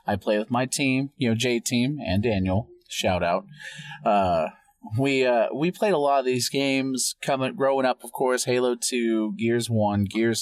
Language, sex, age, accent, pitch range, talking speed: English, male, 30-49, American, 110-155 Hz, 185 wpm